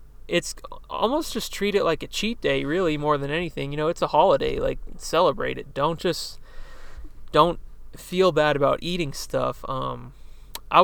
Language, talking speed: English, 170 wpm